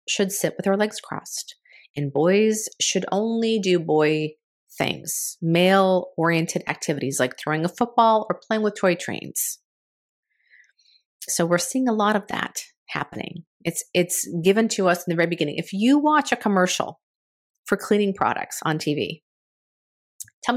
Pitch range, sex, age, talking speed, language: 160-215 Hz, female, 40-59, 160 wpm, English